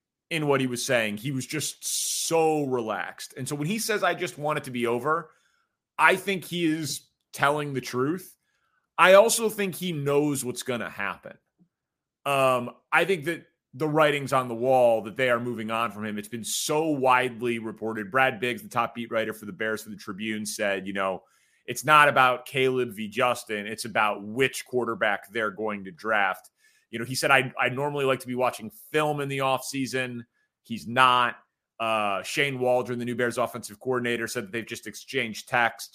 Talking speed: 195 wpm